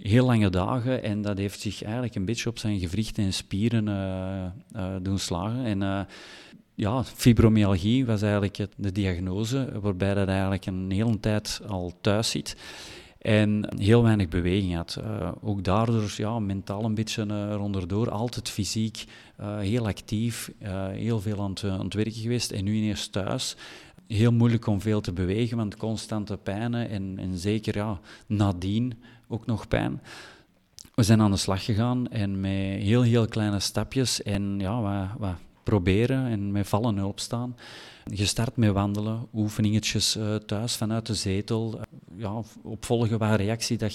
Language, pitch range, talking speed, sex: Dutch, 100-115 Hz, 165 wpm, male